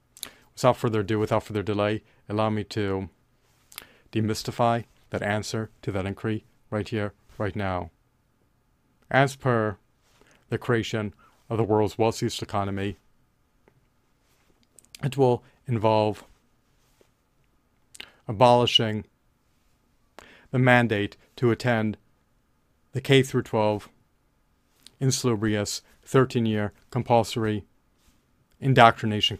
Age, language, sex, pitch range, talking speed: 40-59, English, male, 105-125 Hz, 90 wpm